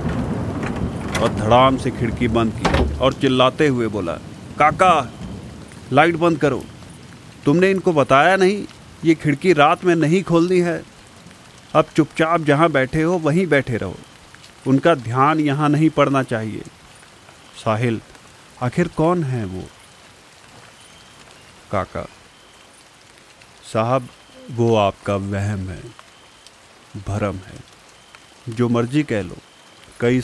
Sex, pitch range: male, 110-145 Hz